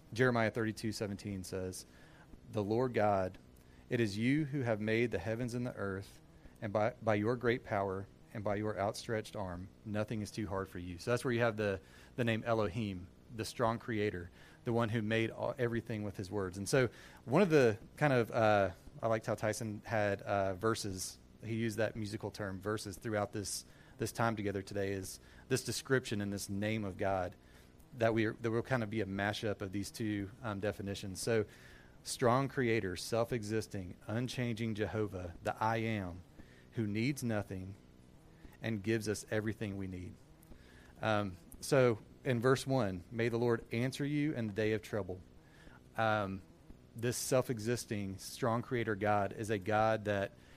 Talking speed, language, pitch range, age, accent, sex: 175 wpm, English, 95-115 Hz, 30-49, American, male